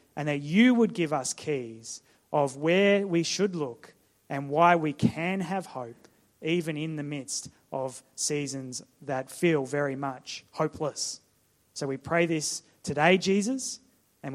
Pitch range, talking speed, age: 145-185 Hz, 150 wpm, 30-49